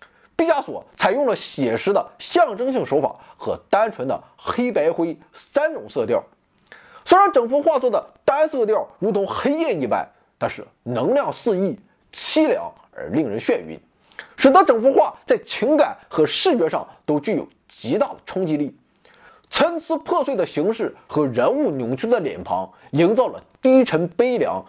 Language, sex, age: Chinese, male, 30-49